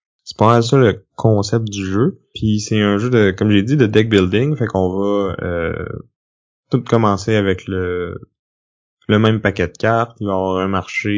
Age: 20-39